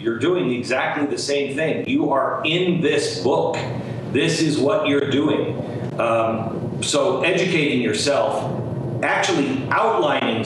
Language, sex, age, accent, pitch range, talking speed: English, male, 40-59, American, 125-160 Hz, 125 wpm